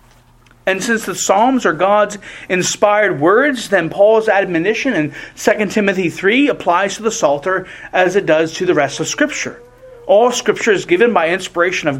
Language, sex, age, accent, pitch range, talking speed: English, male, 40-59, American, 160-235 Hz, 170 wpm